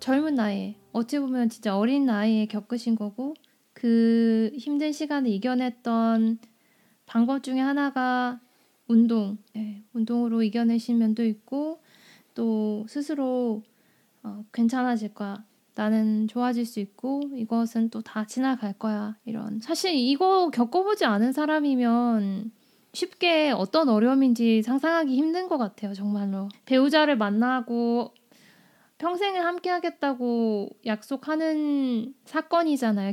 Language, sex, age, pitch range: Korean, female, 20-39, 220-275 Hz